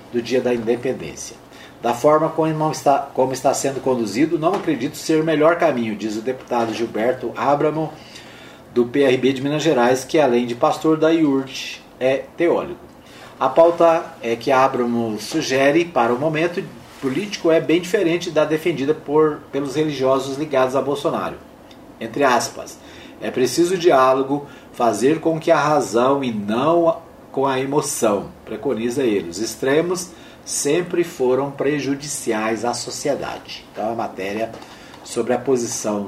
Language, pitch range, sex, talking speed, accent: Portuguese, 120-160 Hz, male, 150 wpm, Brazilian